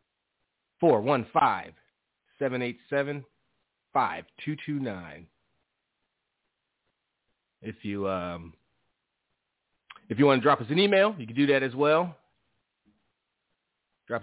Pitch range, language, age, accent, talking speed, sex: 105-135 Hz, English, 30-49, American, 120 wpm, male